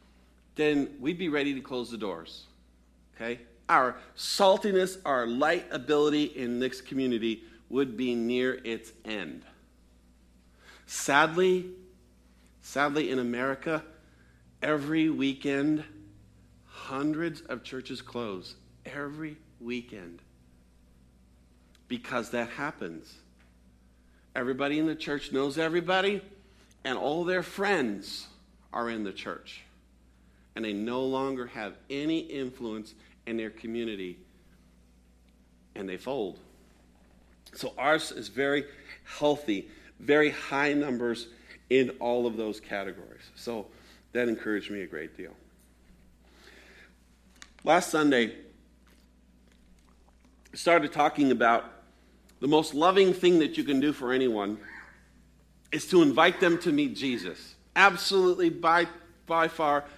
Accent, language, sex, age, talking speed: American, English, male, 50-69, 110 wpm